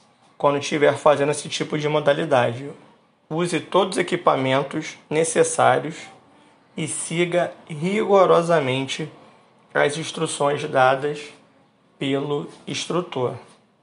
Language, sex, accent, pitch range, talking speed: Portuguese, male, Brazilian, 140-175 Hz, 85 wpm